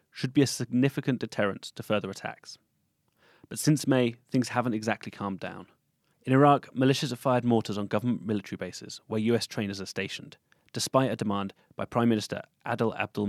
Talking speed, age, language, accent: 175 wpm, 30-49, English, British